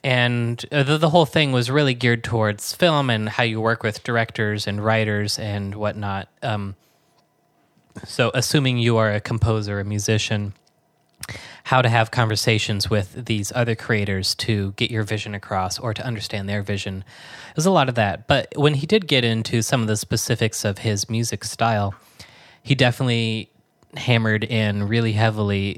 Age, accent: 20-39, American